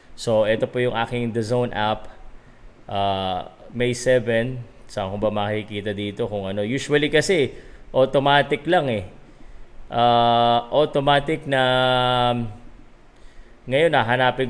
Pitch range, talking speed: 110-145 Hz, 125 wpm